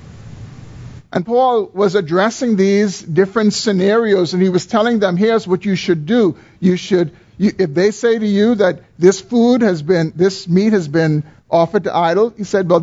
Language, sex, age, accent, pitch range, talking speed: English, male, 50-69, American, 150-205 Hz, 185 wpm